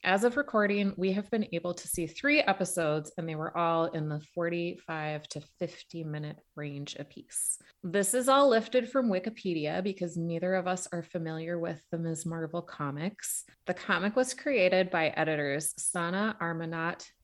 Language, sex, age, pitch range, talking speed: English, female, 20-39, 155-190 Hz, 165 wpm